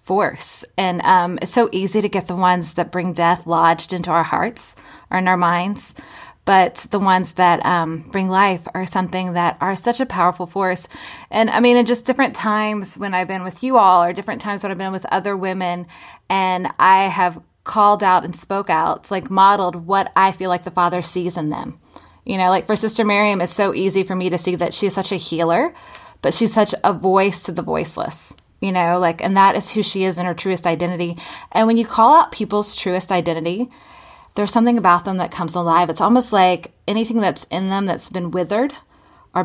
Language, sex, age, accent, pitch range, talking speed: English, female, 20-39, American, 180-210 Hz, 215 wpm